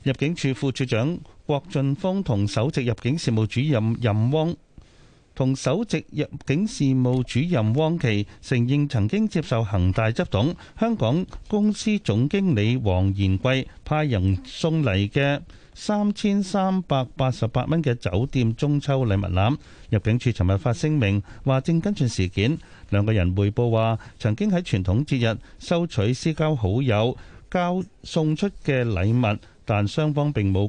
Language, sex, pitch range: Chinese, male, 105-150 Hz